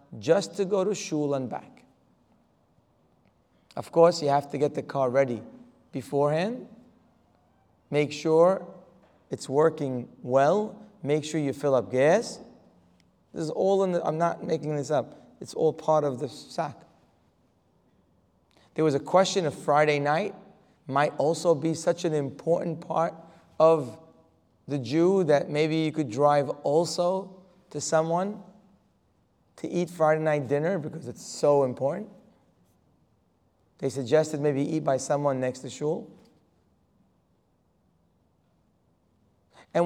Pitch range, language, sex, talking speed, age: 130-170 Hz, English, male, 130 wpm, 30-49